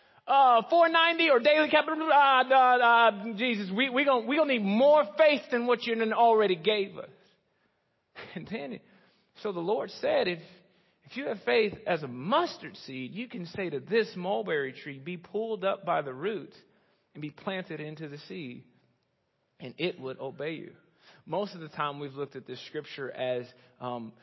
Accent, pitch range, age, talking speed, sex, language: American, 130-195 Hz, 40-59, 185 wpm, male, English